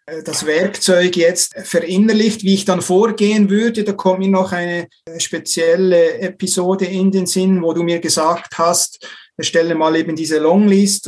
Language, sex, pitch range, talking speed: German, male, 165-190 Hz, 155 wpm